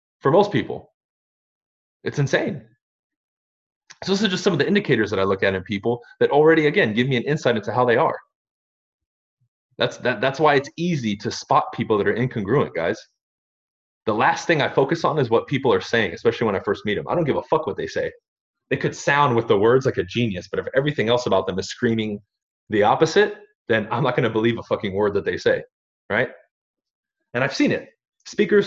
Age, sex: 20-39, male